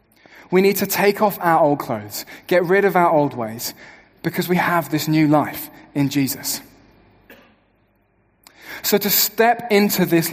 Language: English